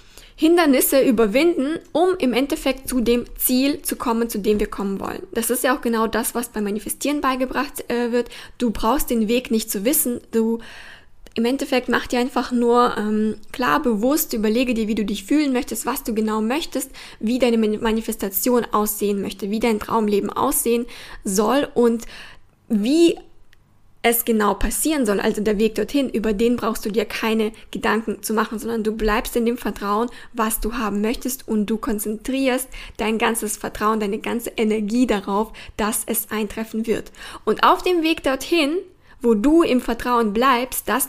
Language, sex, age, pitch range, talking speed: German, female, 10-29, 215-260 Hz, 175 wpm